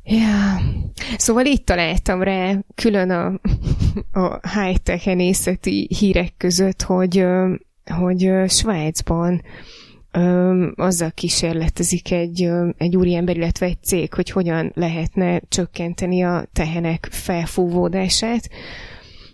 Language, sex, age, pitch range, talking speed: Hungarian, female, 20-39, 170-195 Hz, 95 wpm